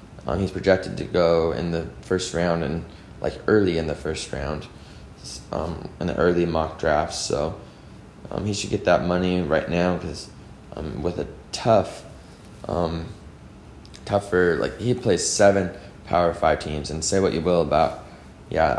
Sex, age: male, 20-39